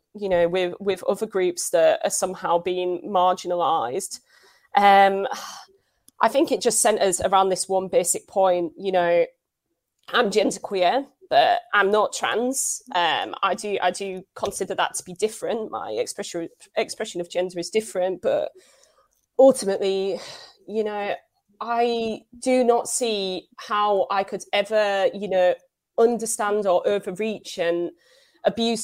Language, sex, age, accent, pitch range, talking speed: English, female, 20-39, British, 185-225 Hz, 135 wpm